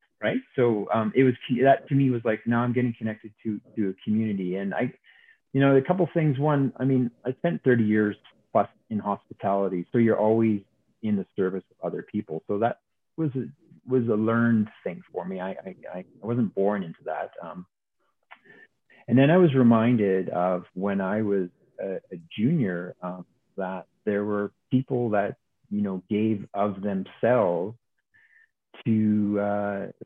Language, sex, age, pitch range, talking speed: English, male, 30-49, 100-125 Hz, 175 wpm